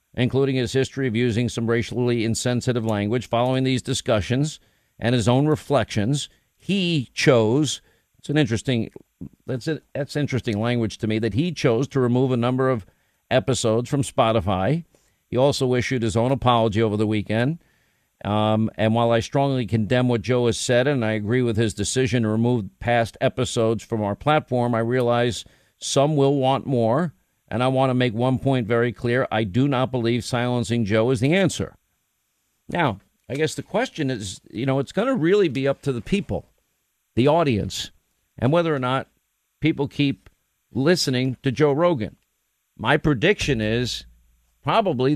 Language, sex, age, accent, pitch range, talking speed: English, male, 50-69, American, 115-140 Hz, 170 wpm